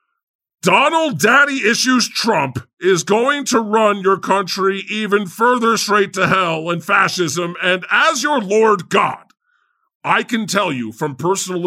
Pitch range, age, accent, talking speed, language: 180-245 Hz, 40-59, American, 145 wpm, English